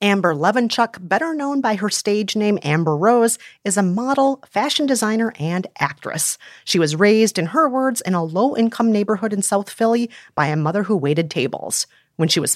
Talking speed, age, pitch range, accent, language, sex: 190 wpm, 40-59, 175-240 Hz, American, English, female